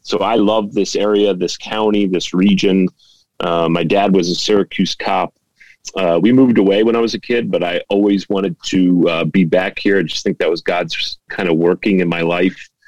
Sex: male